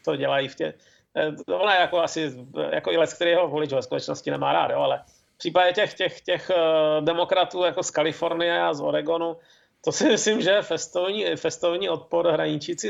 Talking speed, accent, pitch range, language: 175 wpm, native, 155-200 Hz, Czech